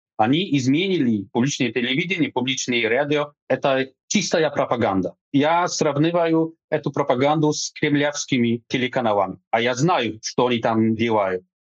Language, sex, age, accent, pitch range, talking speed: Ukrainian, male, 30-49, Polish, 120-160 Hz, 120 wpm